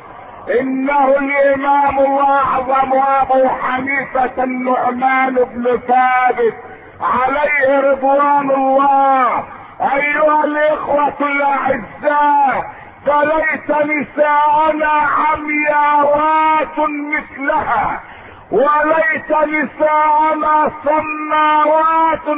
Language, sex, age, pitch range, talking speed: Arabic, male, 50-69, 270-310 Hz, 55 wpm